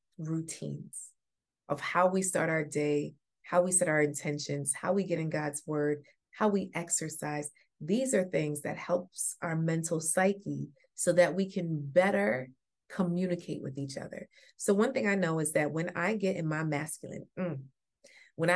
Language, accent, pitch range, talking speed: English, American, 175-255 Hz, 170 wpm